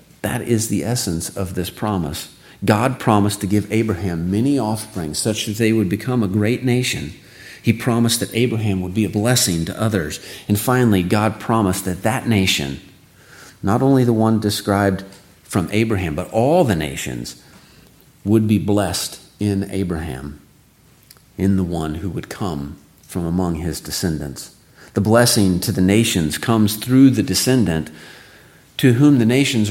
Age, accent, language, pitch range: 40-59, American, English, 90-110 Hz